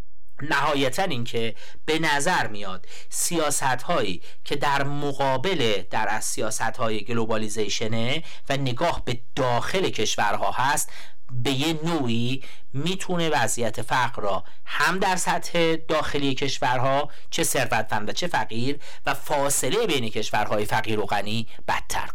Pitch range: 115-165 Hz